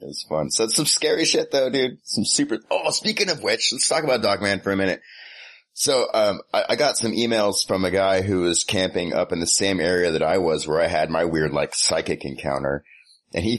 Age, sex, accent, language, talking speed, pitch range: 30-49, male, American, English, 235 wpm, 75-100 Hz